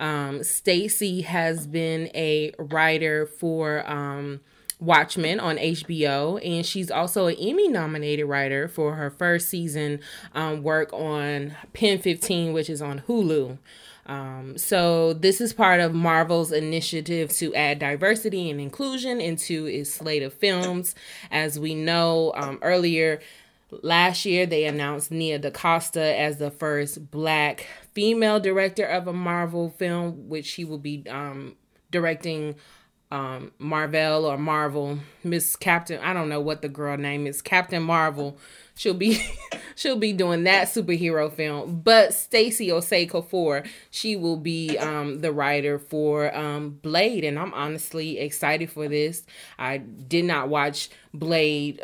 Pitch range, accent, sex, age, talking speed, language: 150-175 Hz, American, female, 20-39, 145 wpm, English